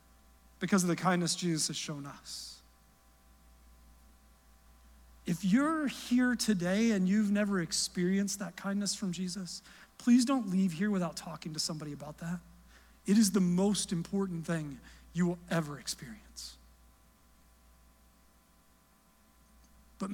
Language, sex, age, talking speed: English, male, 40-59, 120 wpm